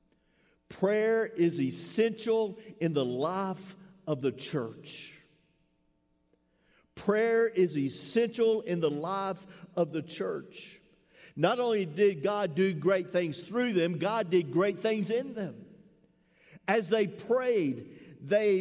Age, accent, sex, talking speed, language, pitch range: 50-69, American, male, 120 wpm, English, 160-215 Hz